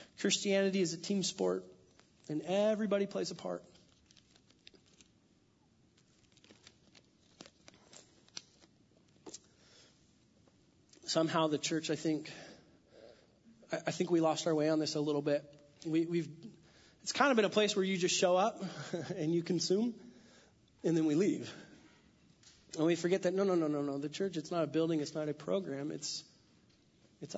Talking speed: 145 wpm